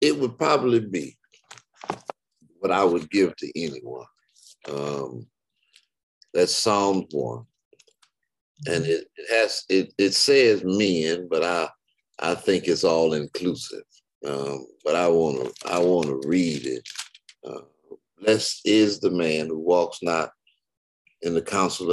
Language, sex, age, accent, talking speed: English, male, 60-79, American, 130 wpm